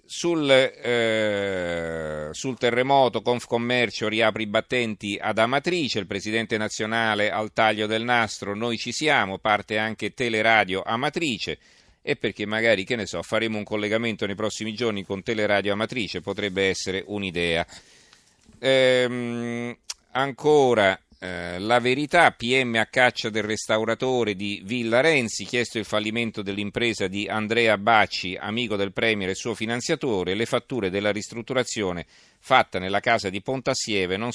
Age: 40-59